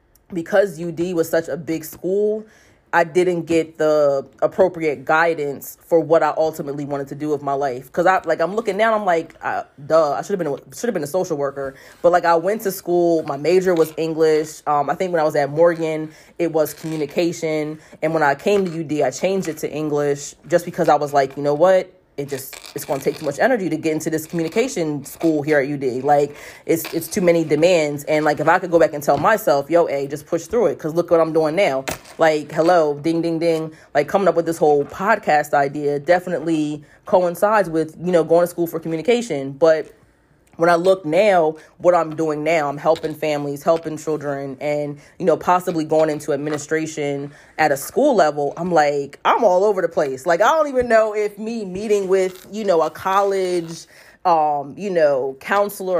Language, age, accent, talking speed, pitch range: English, 20-39, American, 215 wpm, 150-175 Hz